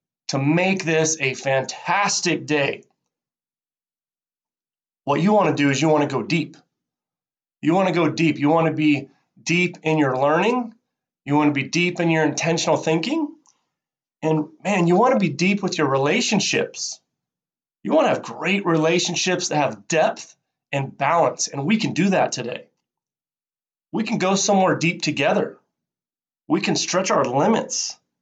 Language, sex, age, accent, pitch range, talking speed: English, male, 30-49, American, 155-210 Hz, 165 wpm